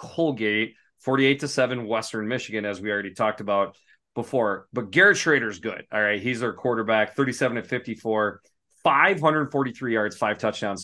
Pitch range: 110-140 Hz